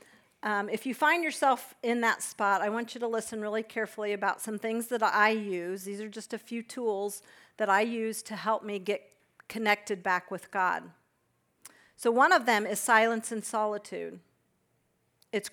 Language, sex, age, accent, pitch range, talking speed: English, female, 50-69, American, 200-225 Hz, 180 wpm